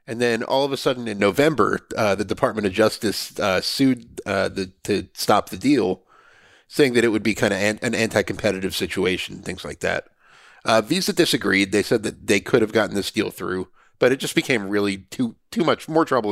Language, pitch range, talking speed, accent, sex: English, 100-125 Hz, 210 wpm, American, male